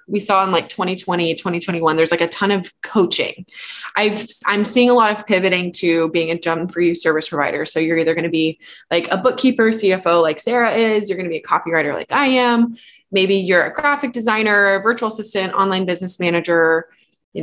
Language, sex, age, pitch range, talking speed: English, female, 20-39, 165-215 Hz, 205 wpm